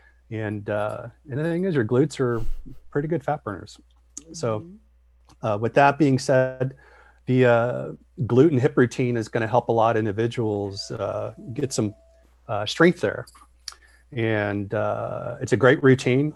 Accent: American